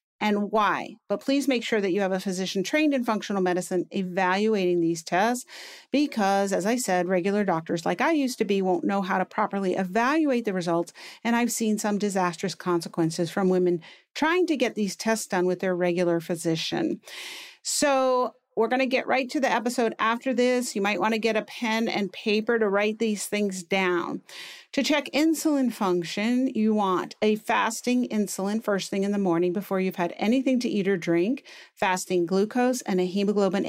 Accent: American